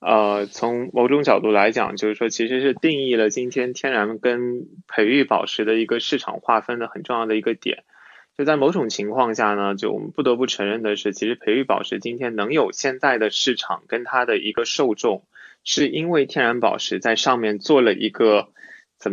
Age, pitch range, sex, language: 20-39, 110-140 Hz, male, Chinese